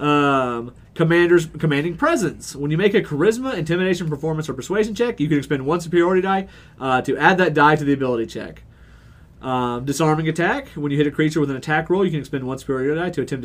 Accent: American